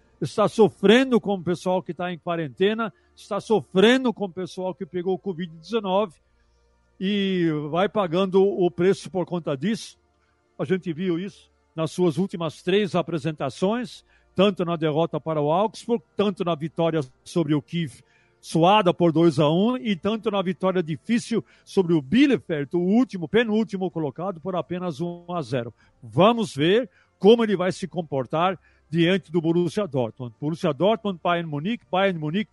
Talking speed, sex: 155 wpm, male